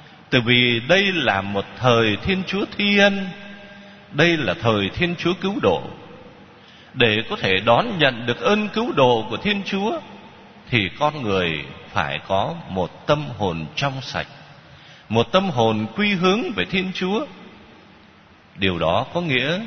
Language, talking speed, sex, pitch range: Vietnamese, 155 wpm, male, 115-180 Hz